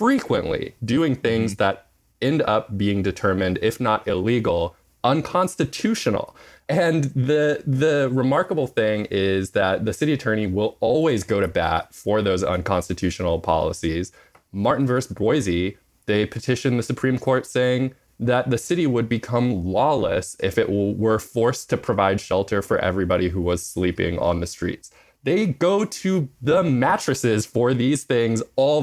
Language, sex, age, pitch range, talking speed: English, male, 20-39, 90-125 Hz, 145 wpm